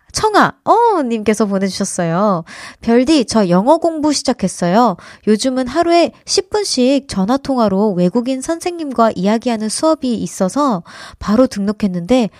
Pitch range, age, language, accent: 190-275 Hz, 20-39, Korean, native